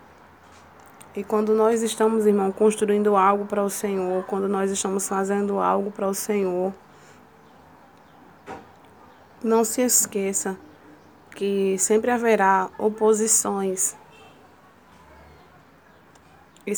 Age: 20-39